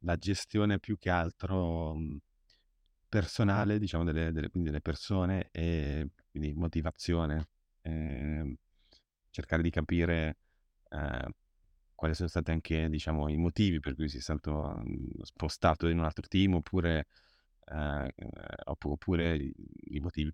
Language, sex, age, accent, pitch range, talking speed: Italian, male, 30-49, native, 80-90 Hz, 120 wpm